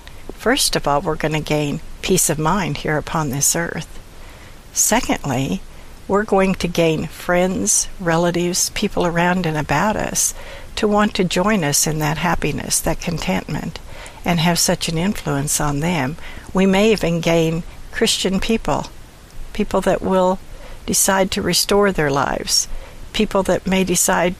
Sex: female